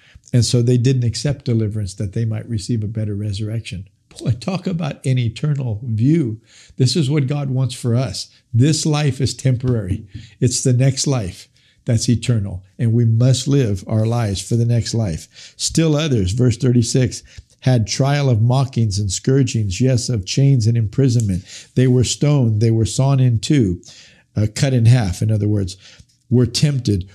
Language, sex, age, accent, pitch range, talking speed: English, male, 50-69, American, 110-135 Hz, 170 wpm